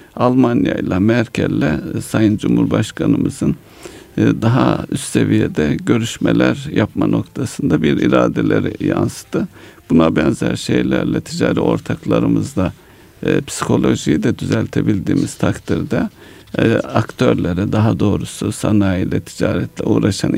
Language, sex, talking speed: Turkish, male, 90 wpm